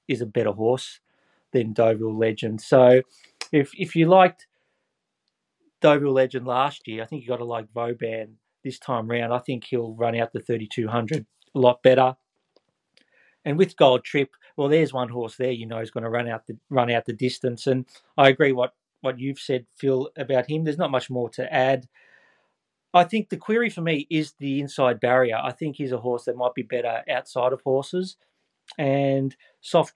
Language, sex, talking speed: English, male, 195 wpm